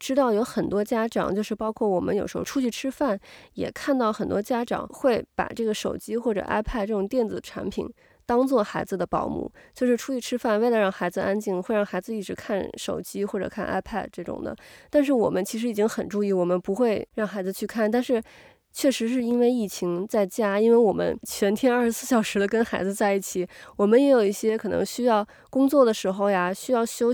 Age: 20-39